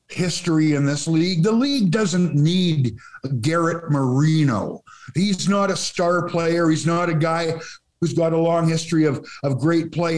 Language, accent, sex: English, American, male